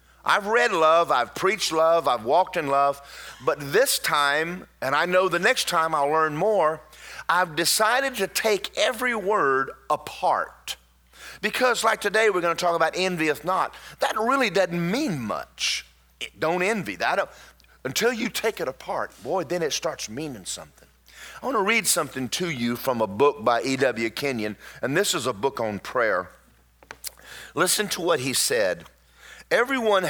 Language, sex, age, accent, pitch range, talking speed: English, male, 40-59, American, 125-185 Hz, 165 wpm